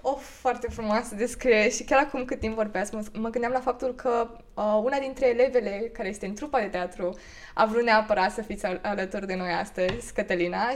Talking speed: 200 wpm